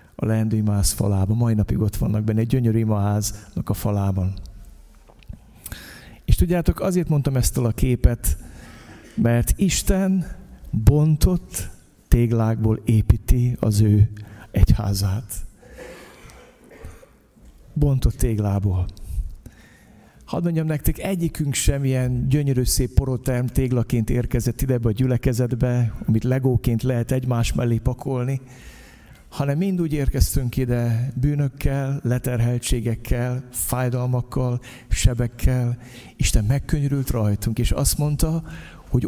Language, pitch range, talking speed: Hungarian, 105-135 Hz, 100 wpm